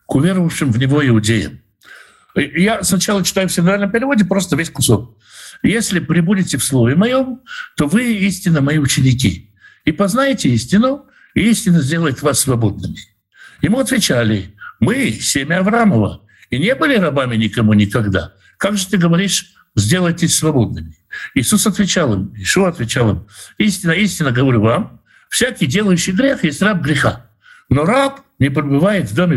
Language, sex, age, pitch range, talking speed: Russian, male, 60-79, 130-210 Hz, 145 wpm